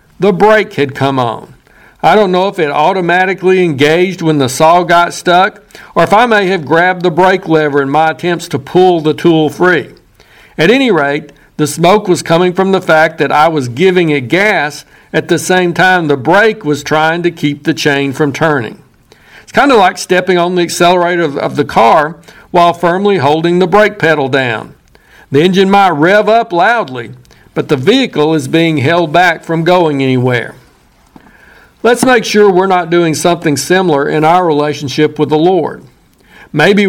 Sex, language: male, English